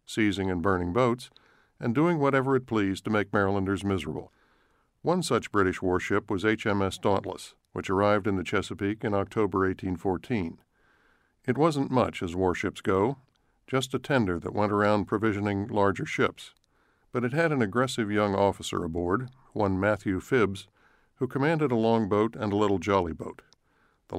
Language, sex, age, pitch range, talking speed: English, male, 50-69, 95-120 Hz, 160 wpm